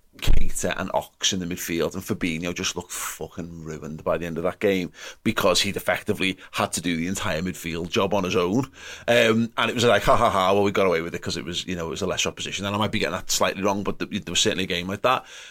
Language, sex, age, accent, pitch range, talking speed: English, male, 30-49, British, 95-110 Hz, 280 wpm